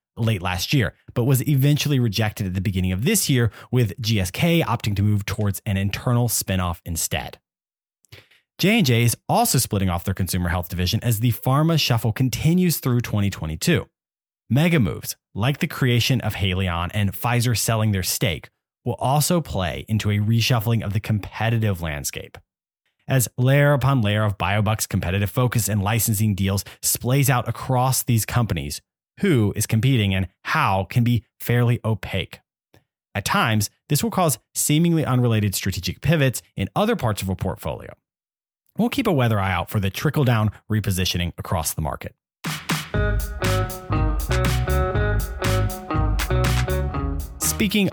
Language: English